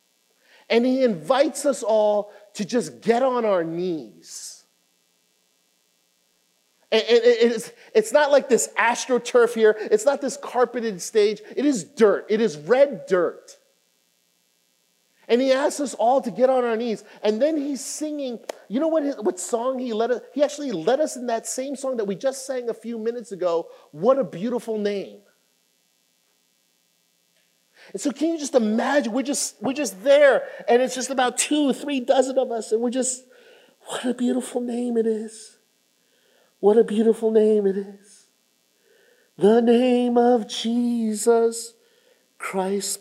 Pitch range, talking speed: 205-260 Hz, 150 wpm